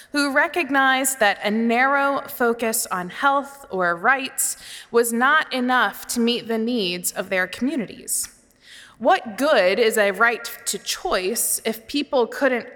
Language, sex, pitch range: English, female, 205-255 Hz